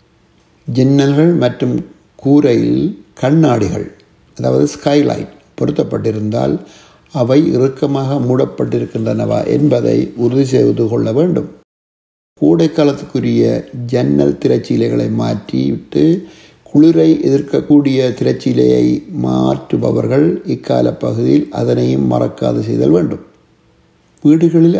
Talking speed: 75 wpm